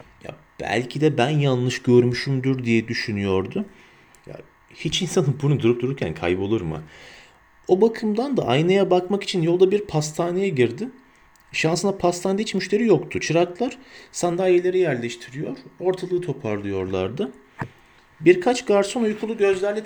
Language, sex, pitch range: Turkish, male, 120-175 Hz